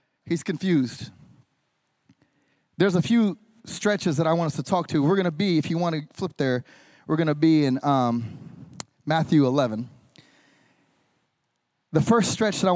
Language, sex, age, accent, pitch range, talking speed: English, male, 30-49, American, 165-280 Hz, 155 wpm